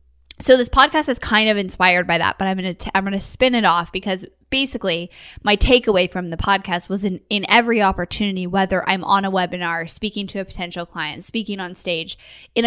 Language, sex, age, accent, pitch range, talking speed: English, female, 10-29, American, 175-220 Hz, 215 wpm